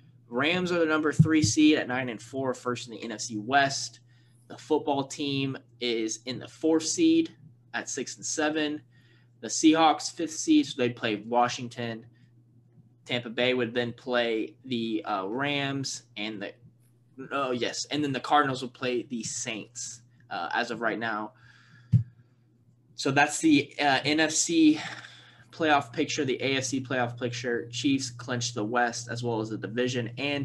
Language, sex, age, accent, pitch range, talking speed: English, male, 10-29, American, 120-140 Hz, 160 wpm